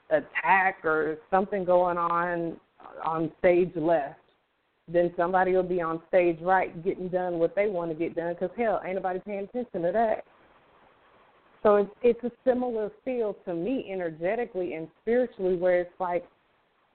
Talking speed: 160 wpm